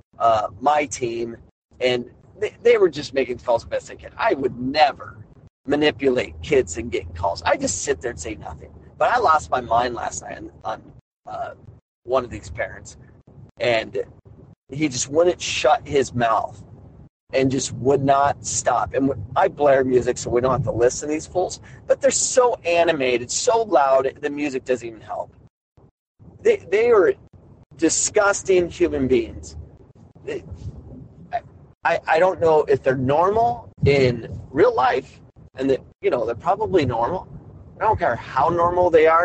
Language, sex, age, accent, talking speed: English, male, 40-59, American, 165 wpm